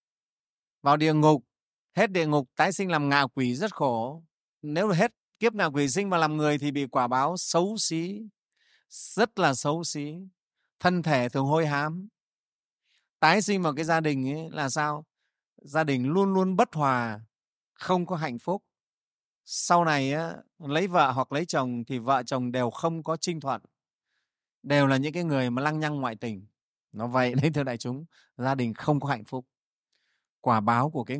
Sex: male